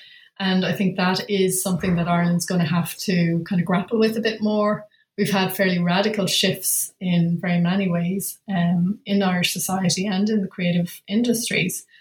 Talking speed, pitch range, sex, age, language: 185 wpm, 175-205 Hz, female, 30-49, English